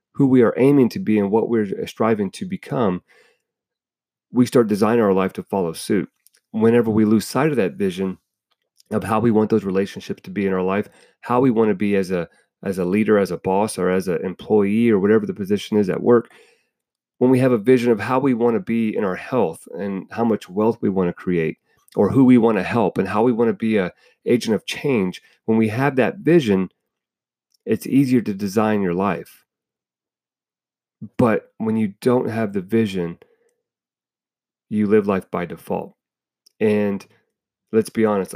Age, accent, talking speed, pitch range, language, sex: 40-59, American, 200 wpm, 105-135 Hz, English, male